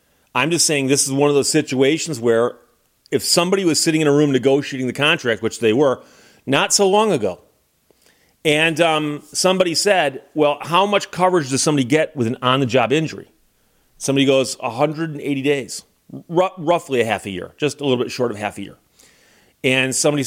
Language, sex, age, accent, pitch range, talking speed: English, male, 40-59, American, 130-155 Hz, 185 wpm